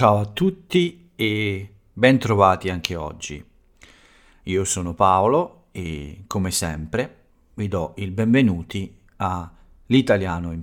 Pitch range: 85-105 Hz